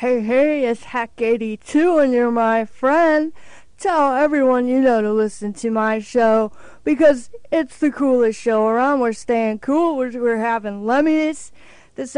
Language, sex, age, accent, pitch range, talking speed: English, female, 40-59, American, 215-260 Hz, 155 wpm